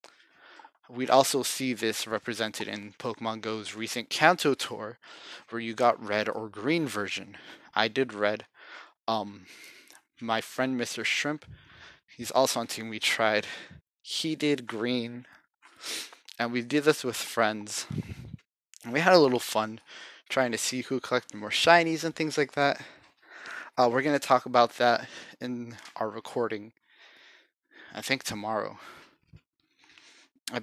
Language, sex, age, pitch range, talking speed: English, male, 20-39, 105-135 Hz, 140 wpm